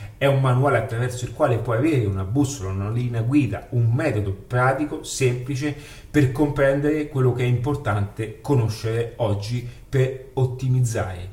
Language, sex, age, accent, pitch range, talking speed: Italian, male, 30-49, native, 105-135 Hz, 145 wpm